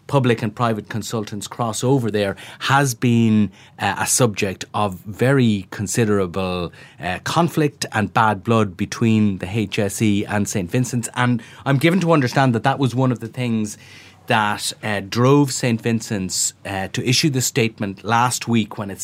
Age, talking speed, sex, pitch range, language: 30-49, 165 wpm, male, 100-125 Hz, English